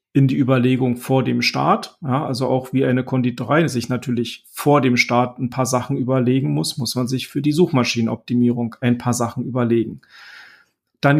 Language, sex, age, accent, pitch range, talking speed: German, male, 40-59, German, 125-145 Hz, 170 wpm